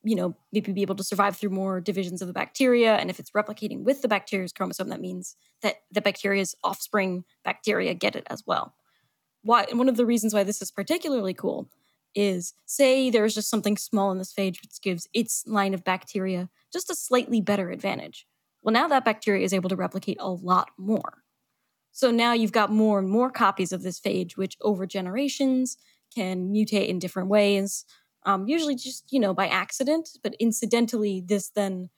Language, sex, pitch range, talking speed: English, female, 190-230 Hz, 195 wpm